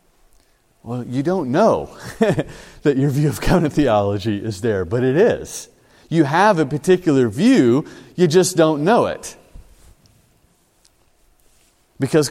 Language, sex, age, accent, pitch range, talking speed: English, male, 40-59, American, 105-155 Hz, 125 wpm